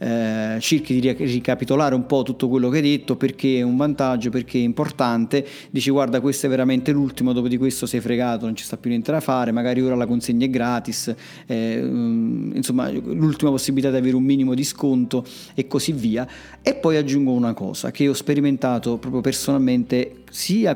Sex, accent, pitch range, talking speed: male, native, 125-160 Hz, 190 wpm